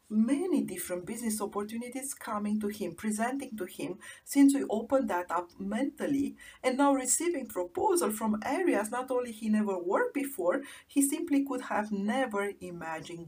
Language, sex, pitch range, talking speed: English, female, 200-285 Hz, 155 wpm